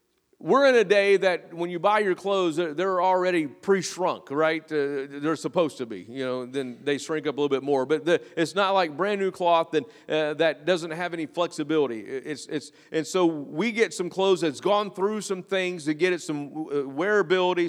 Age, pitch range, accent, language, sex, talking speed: 40-59, 175-220 Hz, American, English, male, 210 wpm